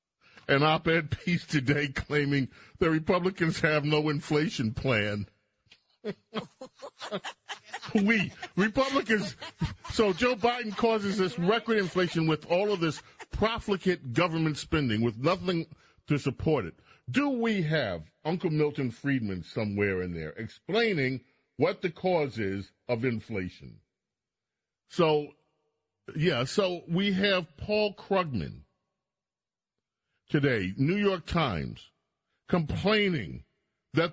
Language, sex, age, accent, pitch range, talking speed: English, male, 40-59, American, 120-180 Hz, 105 wpm